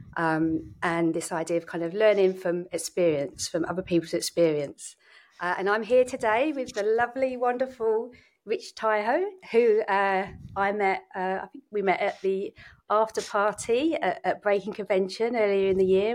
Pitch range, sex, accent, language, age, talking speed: 170-230 Hz, female, British, English, 40-59, 170 wpm